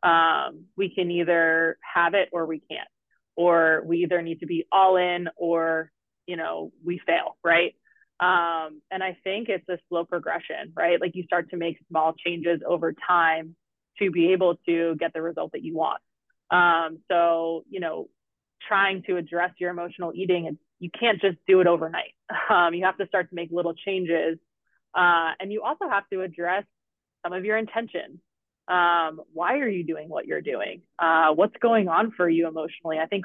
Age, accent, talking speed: 20-39, American, 190 wpm